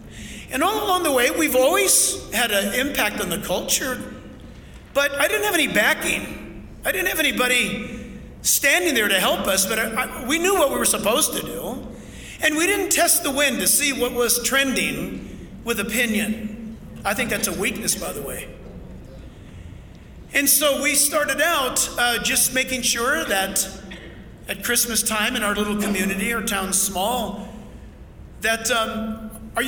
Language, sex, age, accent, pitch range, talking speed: English, male, 50-69, American, 220-295 Hz, 170 wpm